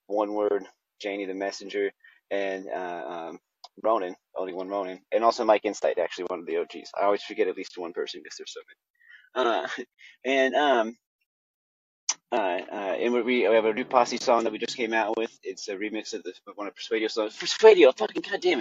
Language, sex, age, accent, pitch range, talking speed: English, male, 30-49, American, 105-160 Hz, 205 wpm